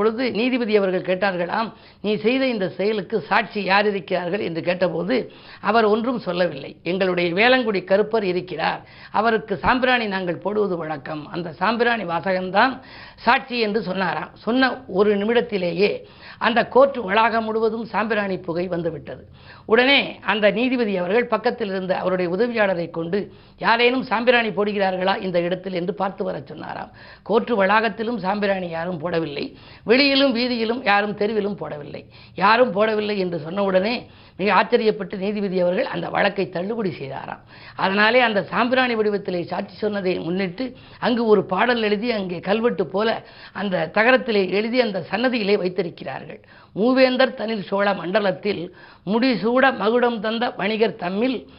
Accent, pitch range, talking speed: native, 185-235 Hz, 130 wpm